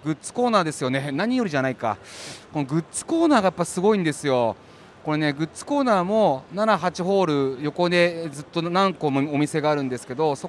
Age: 30-49